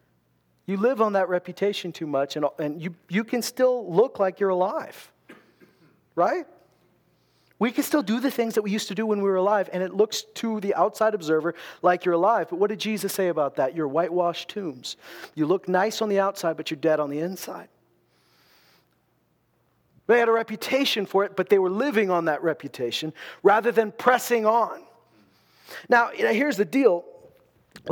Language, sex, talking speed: English, male, 190 wpm